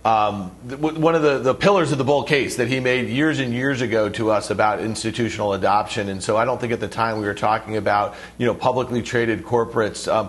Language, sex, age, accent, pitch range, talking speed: English, male, 40-59, American, 120-150 Hz, 240 wpm